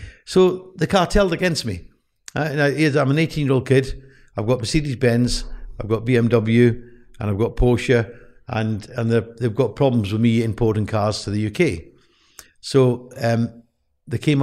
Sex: male